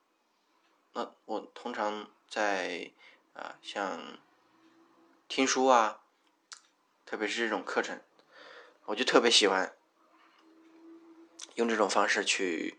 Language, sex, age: Chinese, male, 20-39